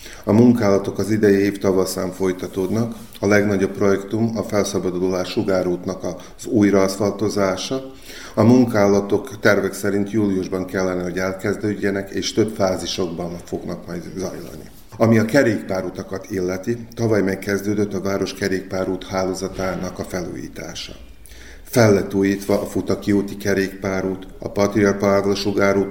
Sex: male